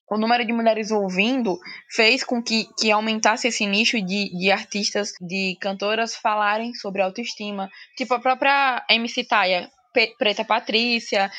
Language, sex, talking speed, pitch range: Portuguese, female, 140 wpm, 205-250 Hz